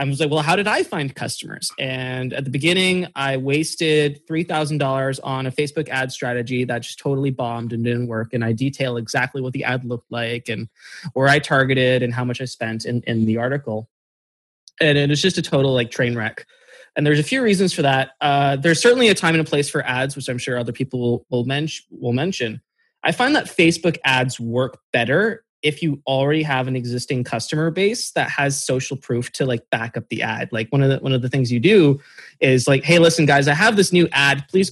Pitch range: 120-155 Hz